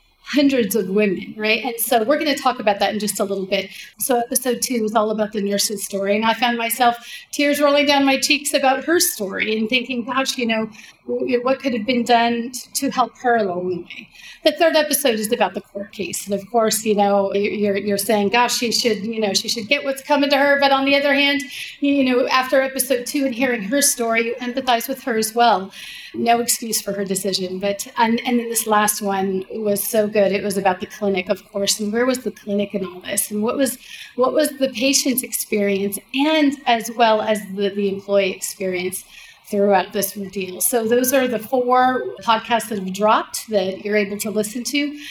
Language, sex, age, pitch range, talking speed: English, female, 40-59, 200-255 Hz, 220 wpm